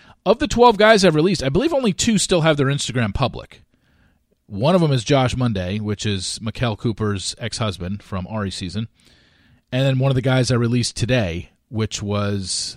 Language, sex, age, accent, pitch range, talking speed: English, male, 40-59, American, 100-155 Hz, 190 wpm